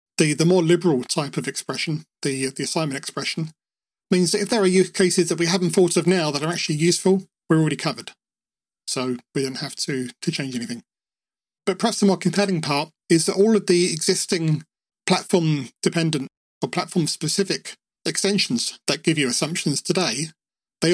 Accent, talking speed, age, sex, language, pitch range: British, 180 wpm, 40-59, male, English, 150-185 Hz